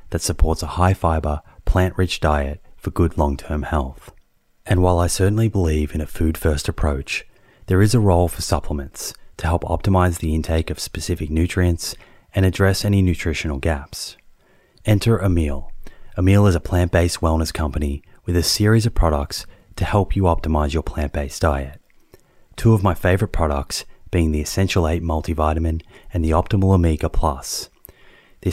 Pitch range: 80-95 Hz